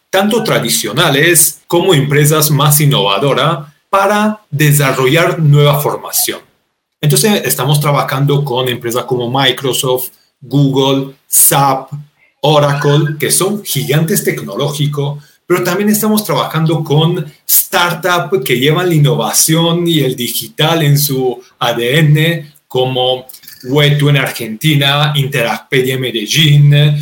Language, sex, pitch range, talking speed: Spanish, male, 140-175 Hz, 105 wpm